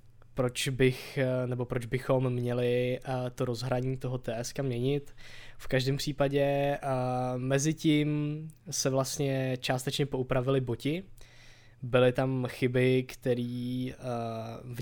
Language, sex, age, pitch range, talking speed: Czech, male, 20-39, 125-135 Hz, 105 wpm